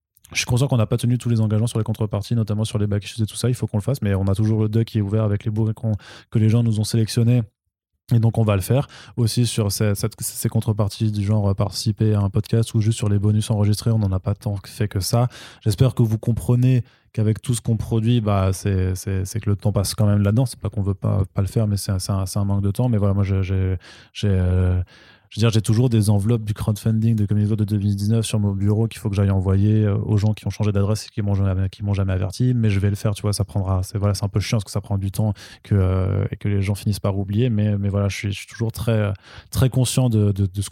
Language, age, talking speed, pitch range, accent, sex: French, 20-39, 295 wpm, 100-115 Hz, French, male